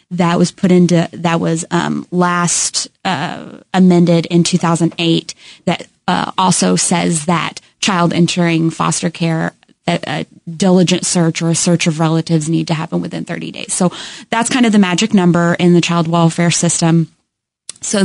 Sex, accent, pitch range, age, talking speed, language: female, American, 170-185 Hz, 20-39, 165 wpm, English